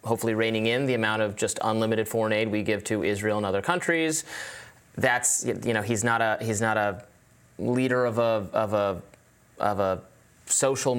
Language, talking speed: English, 185 wpm